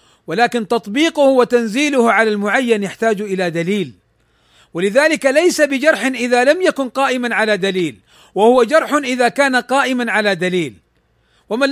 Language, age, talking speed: Arabic, 40-59, 130 wpm